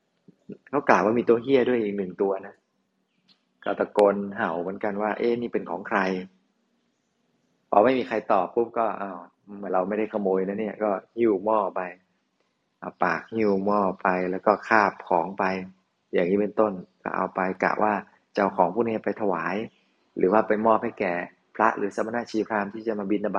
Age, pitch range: 20-39, 100-120 Hz